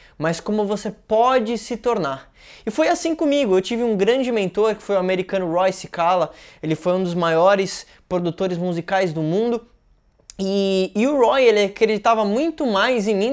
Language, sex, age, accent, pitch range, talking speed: Portuguese, male, 10-29, Brazilian, 185-245 Hz, 180 wpm